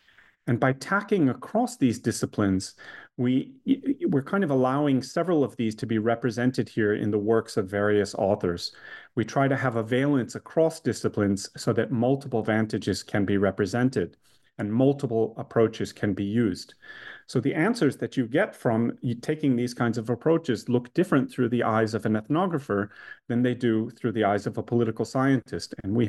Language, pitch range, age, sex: English, 110-135 Hz, 30-49, male